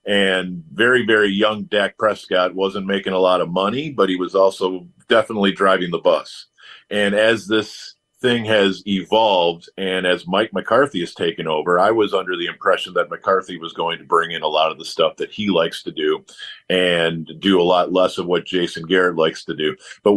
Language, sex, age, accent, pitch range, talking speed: English, male, 40-59, American, 90-110 Hz, 200 wpm